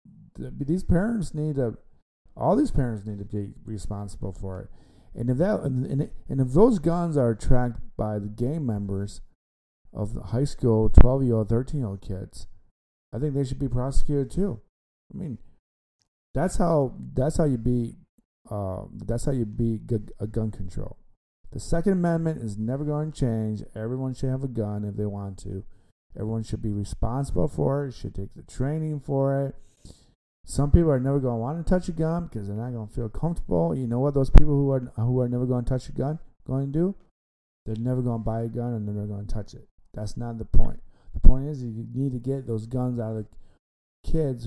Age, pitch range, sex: 50-69, 105-135 Hz, male